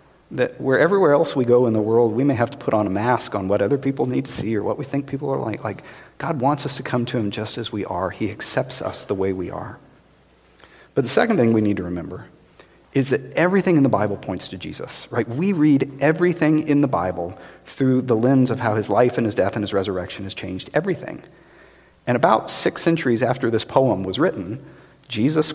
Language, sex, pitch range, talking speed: English, male, 105-140 Hz, 235 wpm